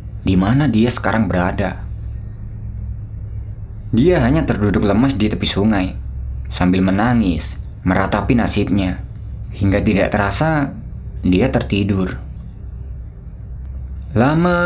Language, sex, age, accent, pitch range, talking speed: Indonesian, male, 20-39, native, 85-110 Hz, 85 wpm